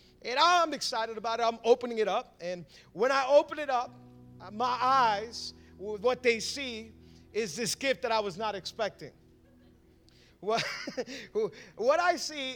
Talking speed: 150 wpm